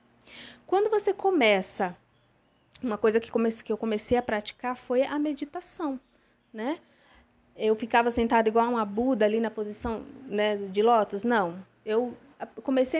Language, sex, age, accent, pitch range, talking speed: Portuguese, female, 20-39, Brazilian, 210-280 Hz, 150 wpm